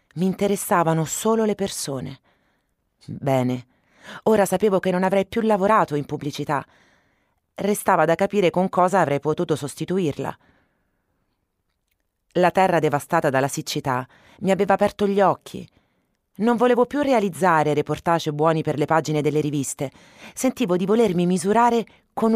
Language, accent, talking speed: Italian, native, 130 wpm